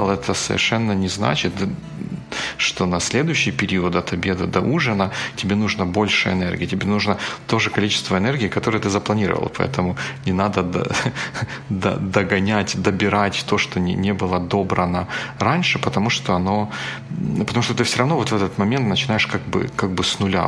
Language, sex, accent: Russian, male, native